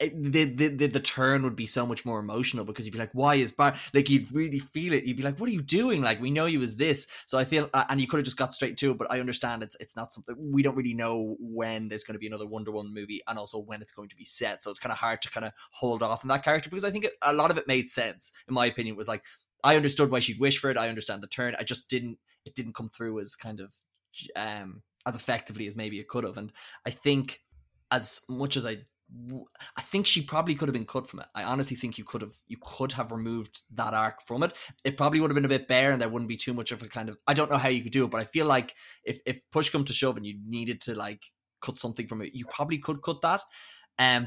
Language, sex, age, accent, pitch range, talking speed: English, male, 20-39, Irish, 110-140 Hz, 295 wpm